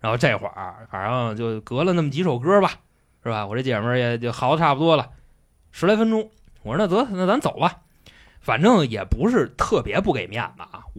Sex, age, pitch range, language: male, 20-39, 105-150 Hz, Chinese